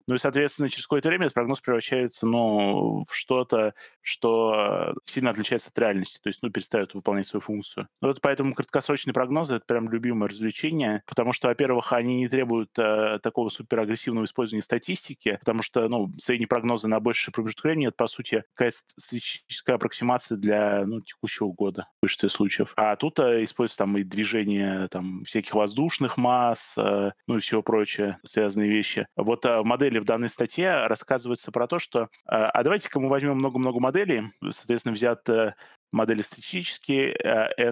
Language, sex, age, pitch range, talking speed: Russian, male, 20-39, 110-135 Hz, 160 wpm